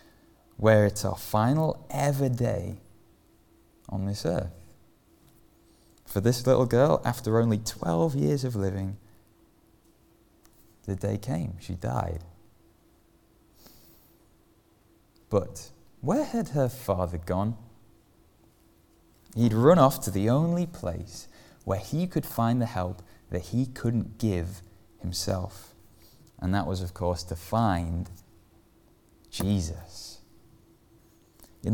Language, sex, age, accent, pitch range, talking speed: English, male, 20-39, British, 95-120 Hz, 110 wpm